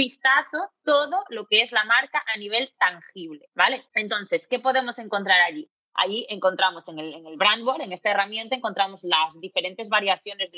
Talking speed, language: 170 wpm, Spanish